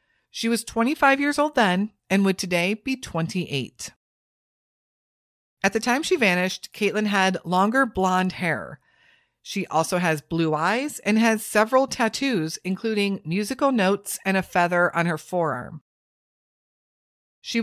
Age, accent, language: 40-59, American, English